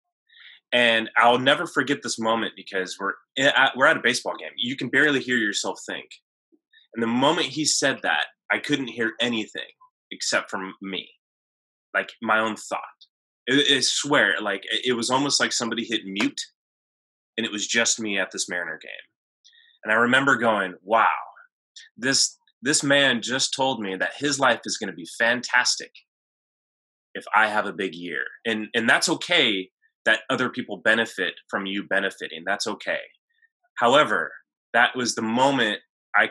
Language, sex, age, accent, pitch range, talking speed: English, male, 20-39, American, 110-155 Hz, 165 wpm